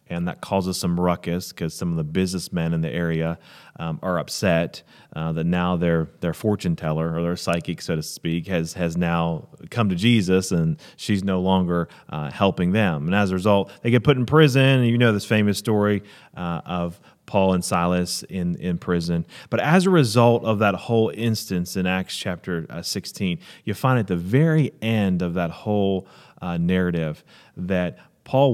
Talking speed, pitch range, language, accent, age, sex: 190 wpm, 85-110 Hz, English, American, 30-49, male